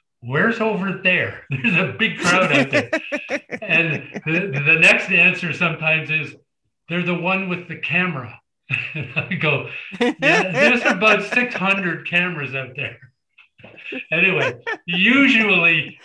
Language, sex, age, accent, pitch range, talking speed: English, male, 50-69, American, 135-175 Hz, 125 wpm